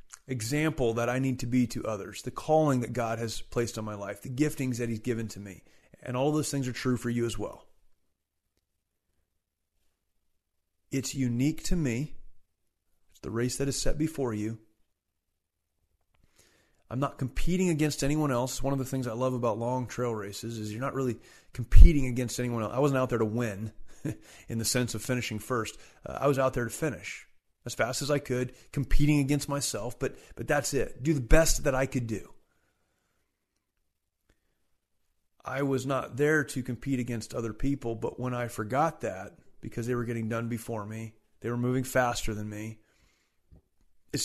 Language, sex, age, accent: English, male, 30-49, American